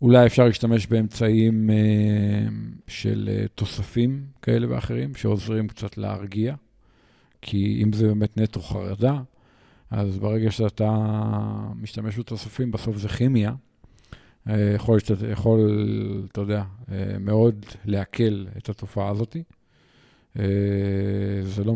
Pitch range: 105-120 Hz